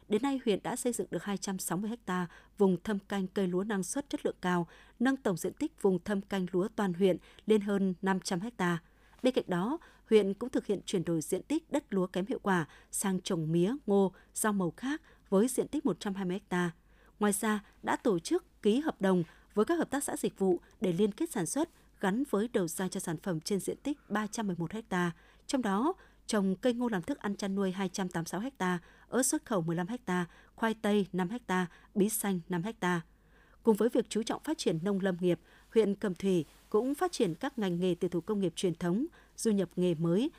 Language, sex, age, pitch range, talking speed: Vietnamese, female, 20-39, 185-230 Hz, 220 wpm